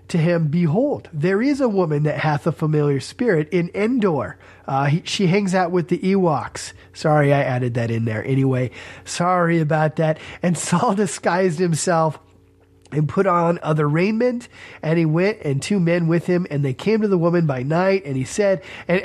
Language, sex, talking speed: English, male, 190 wpm